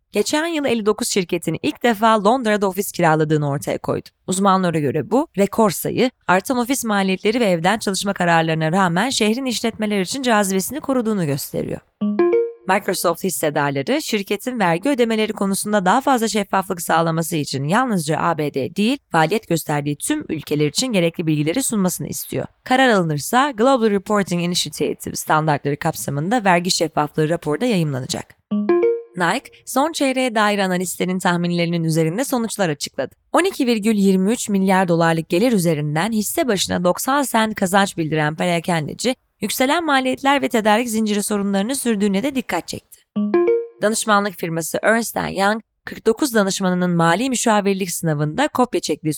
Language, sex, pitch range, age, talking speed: Turkish, female, 165-230 Hz, 30-49, 130 wpm